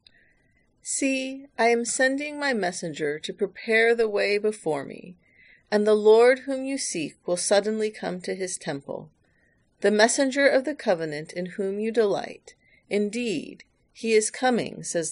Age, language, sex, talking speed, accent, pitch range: 40-59, English, female, 150 wpm, American, 195-245 Hz